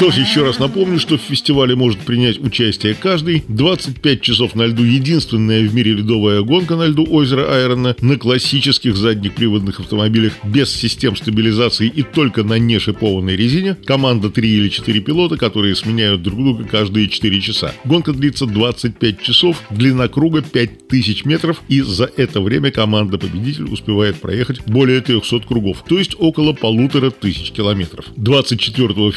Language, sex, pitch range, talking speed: Russian, male, 110-140 Hz, 150 wpm